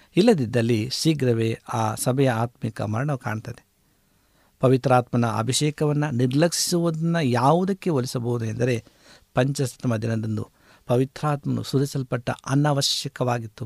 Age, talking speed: 60-79, 80 wpm